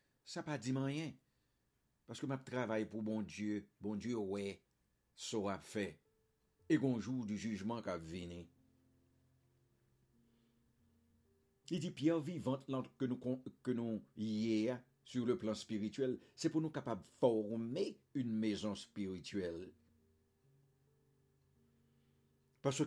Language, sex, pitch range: English, male, 115-150 Hz